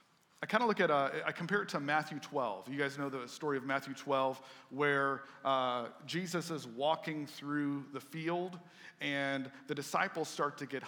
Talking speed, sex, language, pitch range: 190 wpm, male, English, 145-180 Hz